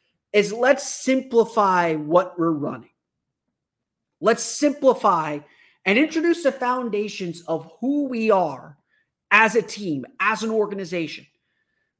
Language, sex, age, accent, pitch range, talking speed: English, male, 30-49, American, 165-230 Hz, 110 wpm